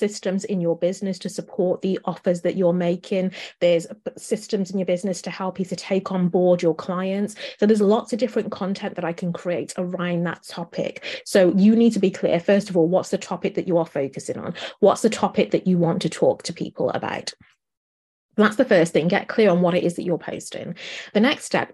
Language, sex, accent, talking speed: English, female, British, 225 wpm